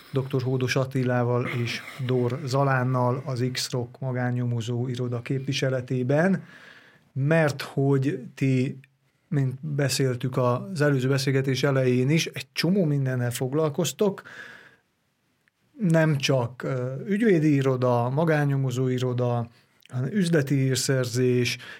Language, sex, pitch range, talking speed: Hungarian, male, 130-150 Hz, 95 wpm